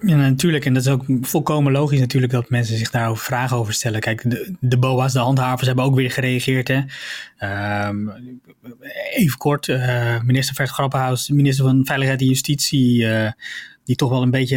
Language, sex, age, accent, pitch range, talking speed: Dutch, male, 20-39, Dutch, 125-140 Hz, 185 wpm